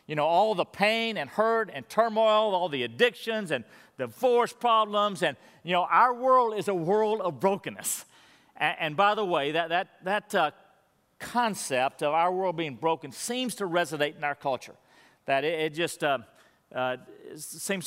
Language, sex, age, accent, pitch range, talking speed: English, male, 50-69, American, 160-220 Hz, 185 wpm